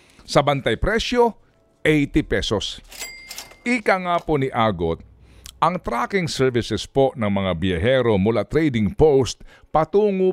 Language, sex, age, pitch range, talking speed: Filipino, male, 50-69, 100-155 Hz, 120 wpm